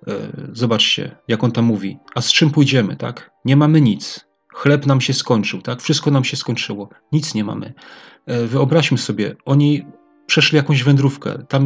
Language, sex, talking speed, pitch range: Polish, male, 165 wpm, 115-140 Hz